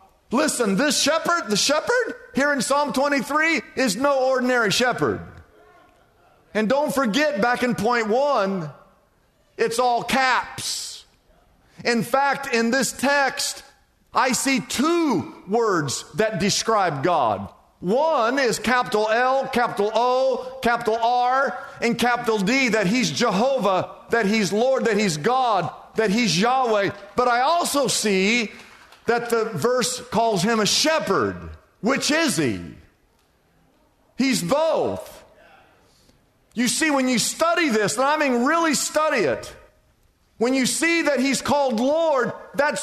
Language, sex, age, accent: English, male, 50-69, American